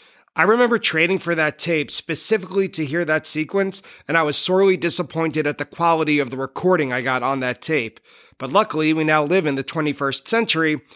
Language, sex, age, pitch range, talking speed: English, male, 30-49, 140-175 Hz, 195 wpm